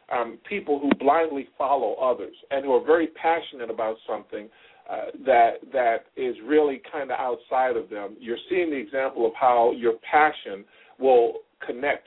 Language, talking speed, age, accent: English, 165 wpm, 50-69, American